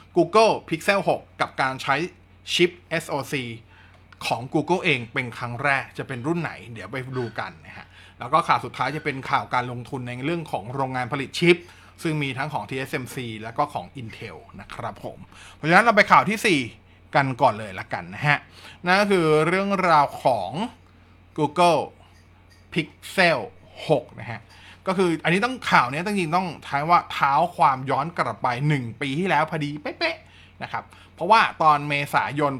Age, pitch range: 20-39, 125-170 Hz